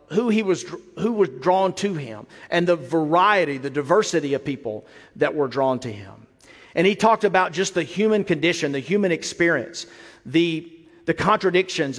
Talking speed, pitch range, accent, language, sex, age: 170 wpm, 155-205 Hz, American, English, male, 50-69